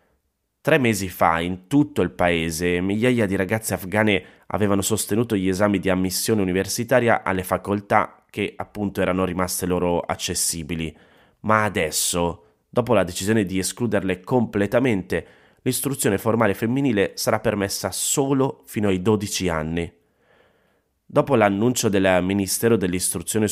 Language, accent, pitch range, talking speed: Italian, native, 95-110 Hz, 125 wpm